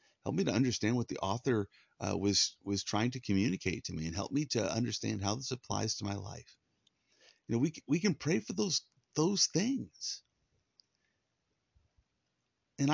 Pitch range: 95-120 Hz